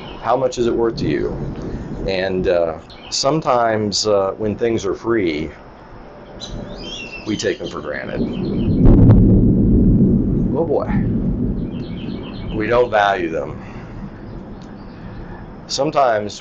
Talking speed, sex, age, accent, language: 100 wpm, male, 40-59, American, English